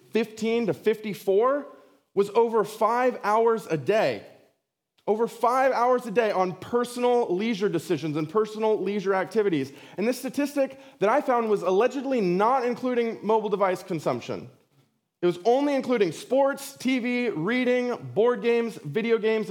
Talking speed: 140 wpm